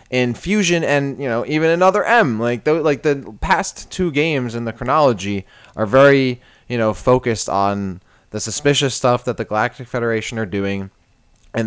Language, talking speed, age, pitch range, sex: English, 175 wpm, 20-39, 115-150 Hz, male